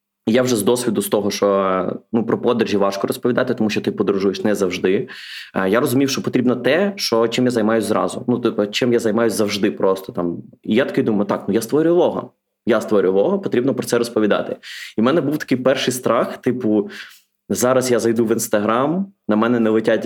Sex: male